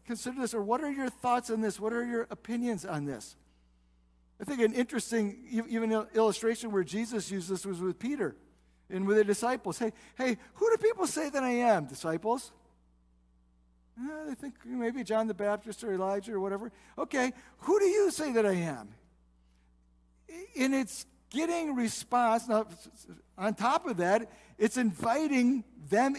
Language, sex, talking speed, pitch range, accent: English, male, 165 wpm, 185-245 Hz, American